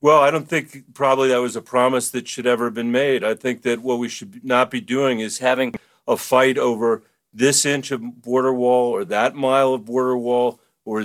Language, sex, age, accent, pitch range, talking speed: English, male, 50-69, American, 120-140 Hz, 225 wpm